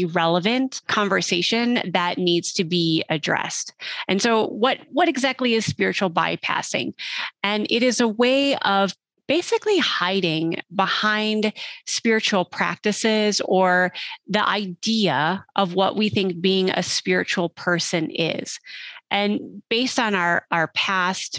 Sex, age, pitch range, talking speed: female, 30-49, 180-225 Hz, 125 wpm